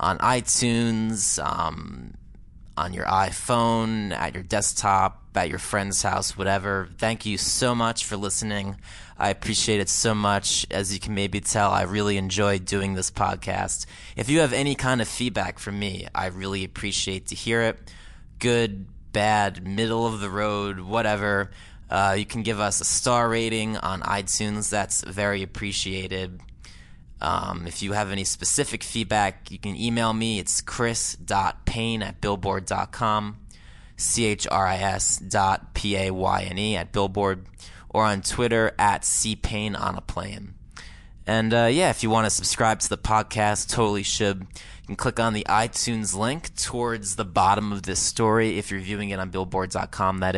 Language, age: English, 20-39